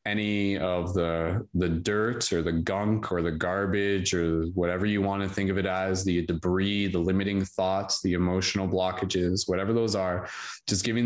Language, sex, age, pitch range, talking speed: English, male, 20-39, 90-100 Hz, 180 wpm